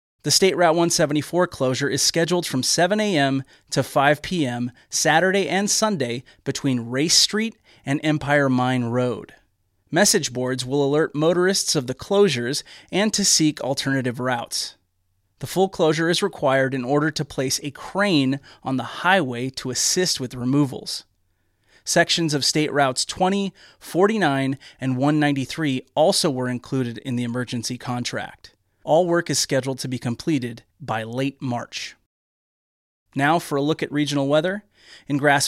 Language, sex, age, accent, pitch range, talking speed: English, male, 30-49, American, 130-160 Hz, 150 wpm